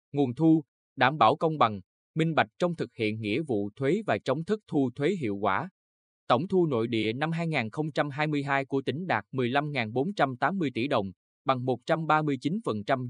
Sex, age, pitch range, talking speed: male, 20-39, 115-150 Hz, 160 wpm